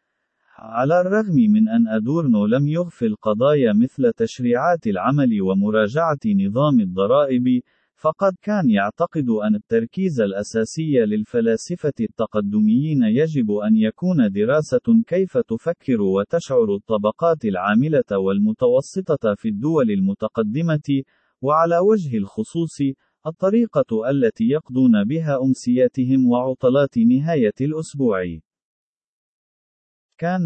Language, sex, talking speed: Arabic, male, 95 wpm